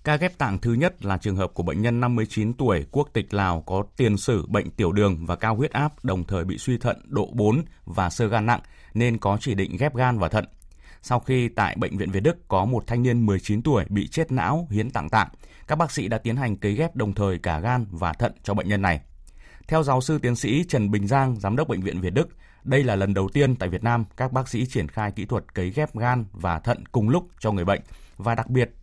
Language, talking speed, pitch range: Vietnamese, 260 wpm, 95-130 Hz